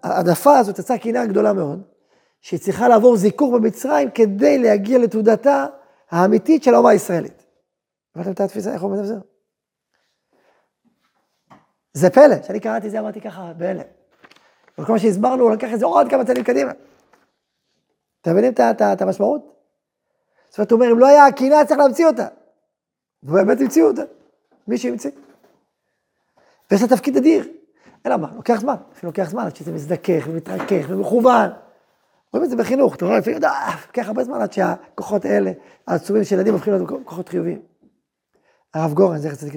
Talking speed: 150 wpm